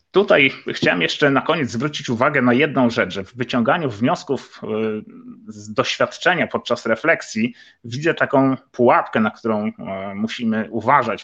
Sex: male